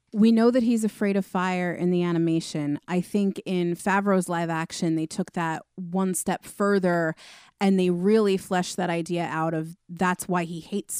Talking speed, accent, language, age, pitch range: 185 wpm, American, English, 30-49, 170-200 Hz